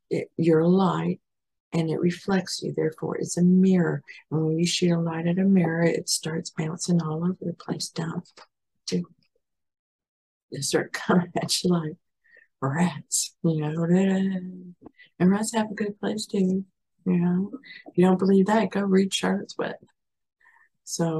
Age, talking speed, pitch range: 50-69, 160 wpm, 160-190 Hz